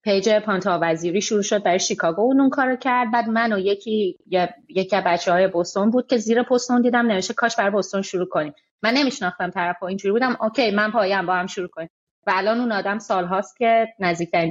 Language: Persian